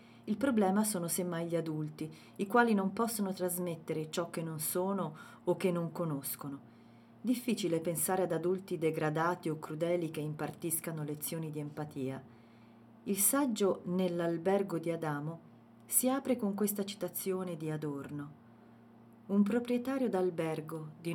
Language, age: Italian, 40-59